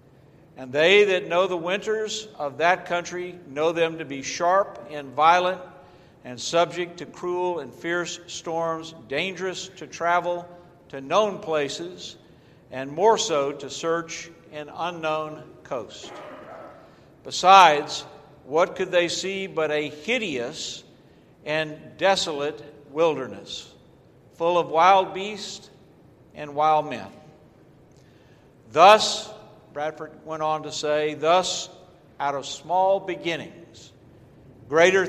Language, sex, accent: English, male, American